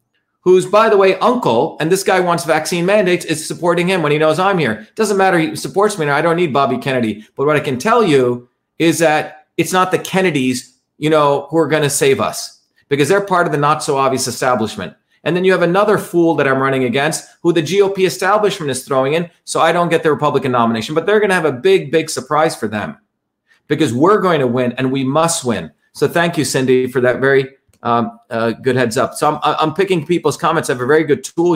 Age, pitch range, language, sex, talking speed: 40-59, 125-170 Hz, English, male, 245 wpm